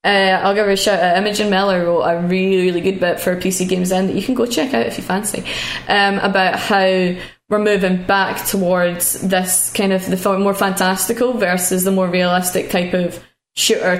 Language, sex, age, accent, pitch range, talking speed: English, female, 10-29, British, 185-210 Hz, 205 wpm